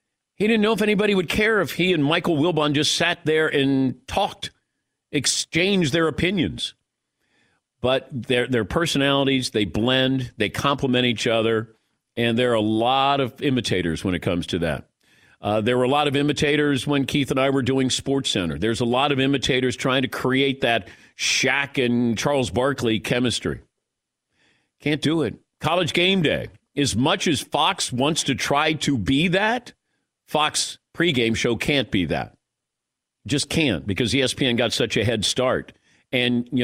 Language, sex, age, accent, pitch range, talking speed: English, male, 50-69, American, 120-150 Hz, 165 wpm